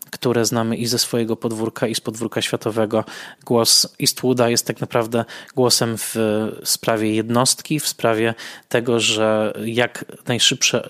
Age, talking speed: 20-39, 140 wpm